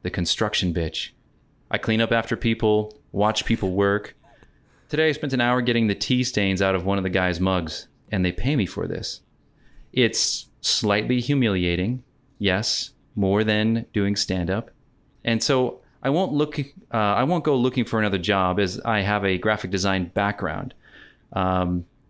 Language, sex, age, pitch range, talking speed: English, male, 30-49, 95-120 Hz, 170 wpm